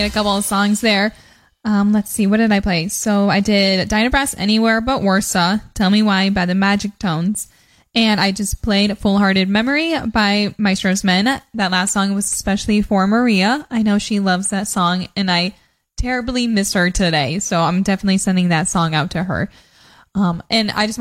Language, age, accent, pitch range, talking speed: English, 10-29, American, 190-225 Hz, 195 wpm